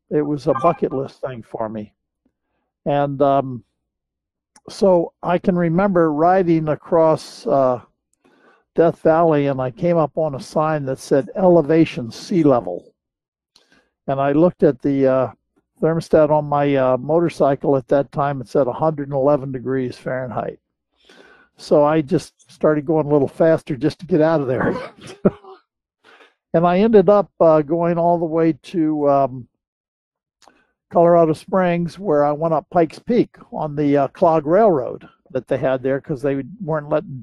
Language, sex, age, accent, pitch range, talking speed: English, male, 60-79, American, 135-165 Hz, 155 wpm